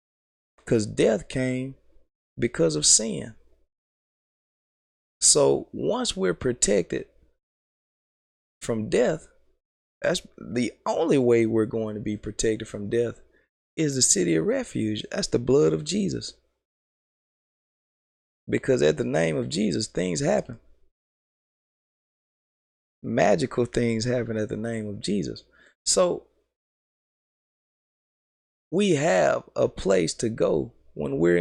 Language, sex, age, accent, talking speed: English, male, 20-39, American, 110 wpm